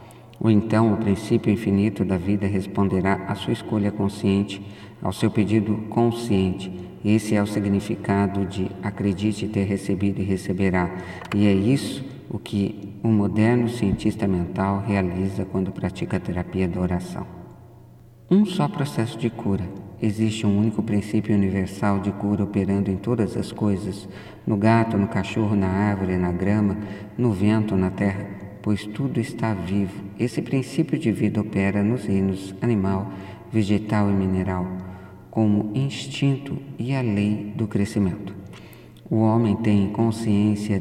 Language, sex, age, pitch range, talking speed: Portuguese, male, 50-69, 95-110 Hz, 145 wpm